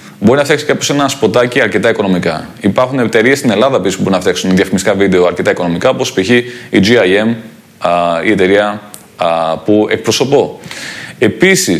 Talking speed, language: 140 wpm, Greek